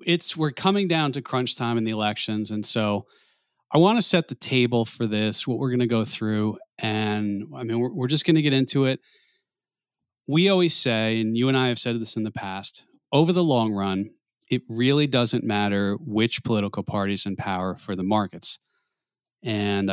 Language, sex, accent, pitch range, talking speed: English, male, American, 100-125 Hz, 200 wpm